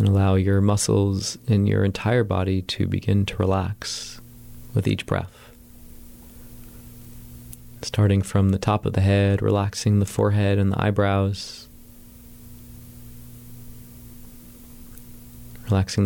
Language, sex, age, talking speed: English, male, 30-49, 110 wpm